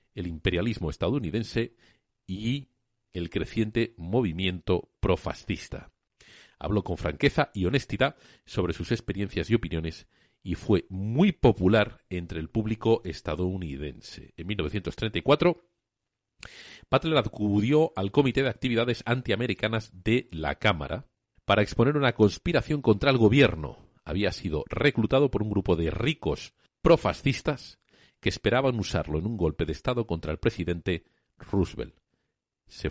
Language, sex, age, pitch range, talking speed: Spanish, male, 40-59, 85-125 Hz, 120 wpm